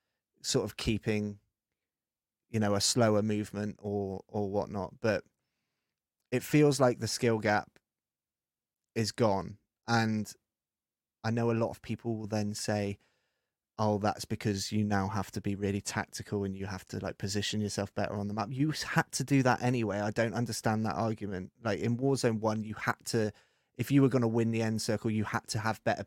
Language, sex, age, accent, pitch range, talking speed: English, male, 20-39, British, 105-120 Hz, 190 wpm